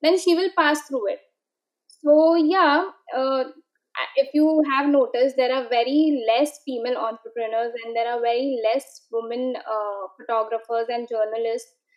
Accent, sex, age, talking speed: Indian, female, 20-39, 145 wpm